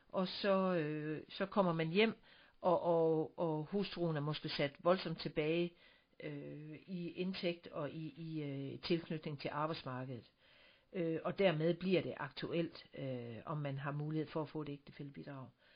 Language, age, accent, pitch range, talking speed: Danish, 60-79, native, 145-175 Hz, 165 wpm